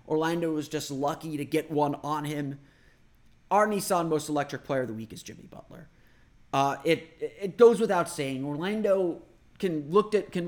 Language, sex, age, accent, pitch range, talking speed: English, male, 30-49, American, 135-170 Hz, 180 wpm